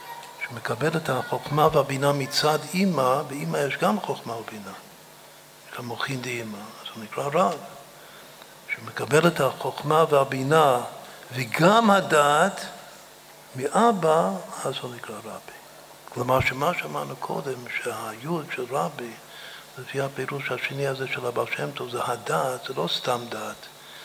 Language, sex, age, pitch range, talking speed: Hebrew, male, 60-79, 120-145 Hz, 120 wpm